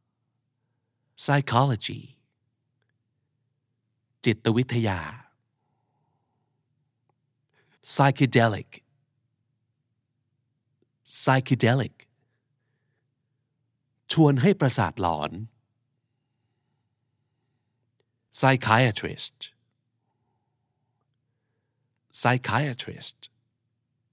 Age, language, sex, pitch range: 50-69, Thai, male, 115-130 Hz